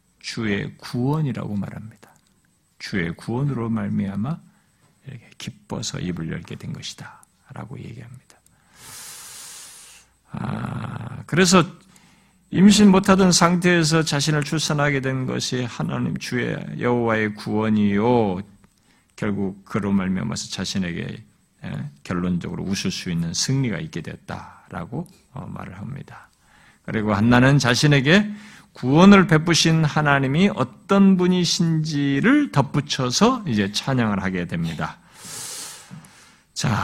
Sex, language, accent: male, Korean, native